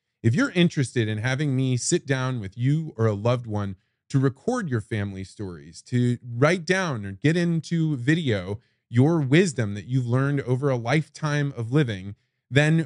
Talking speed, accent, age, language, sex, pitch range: 175 wpm, American, 20-39, English, male, 115-155 Hz